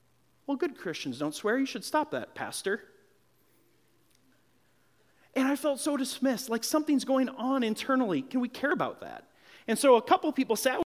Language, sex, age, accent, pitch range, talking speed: English, male, 30-49, American, 185-260 Hz, 175 wpm